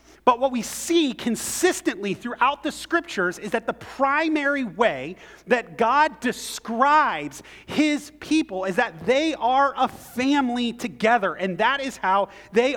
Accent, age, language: American, 30-49, English